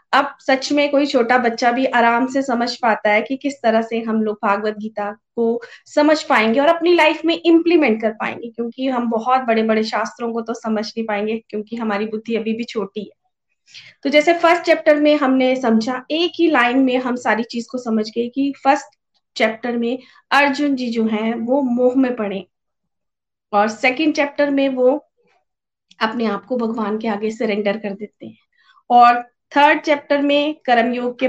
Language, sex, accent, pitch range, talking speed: Hindi, female, native, 225-275 Hz, 170 wpm